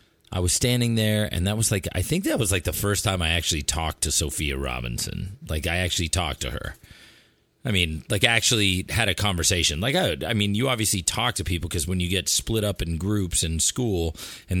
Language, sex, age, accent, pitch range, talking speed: English, male, 30-49, American, 85-110 Hz, 230 wpm